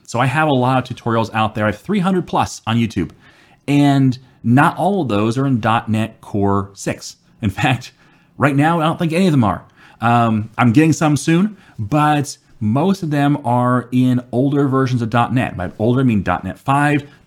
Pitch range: 120-155 Hz